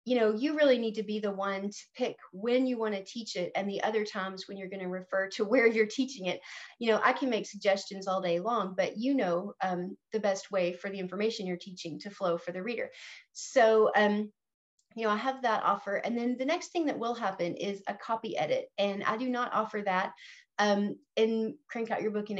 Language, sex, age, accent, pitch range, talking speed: English, female, 30-49, American, 195-235 Hz, 240 wpm